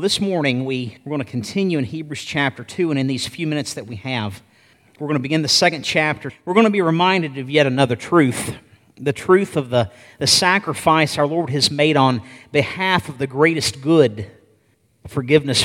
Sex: male